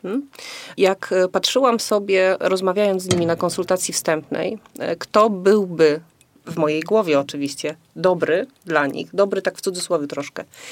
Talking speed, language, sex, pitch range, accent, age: 130 wpm, Polish, female, 170-205 Hz, native, 30-49